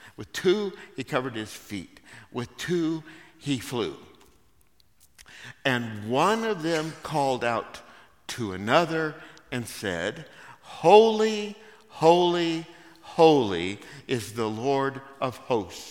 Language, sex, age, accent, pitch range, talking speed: English, male, 60-79, American, 105-165 Hz, 105 wpm